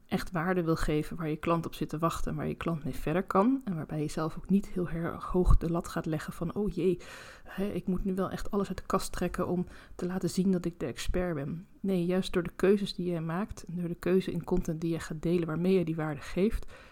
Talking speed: 265 wpm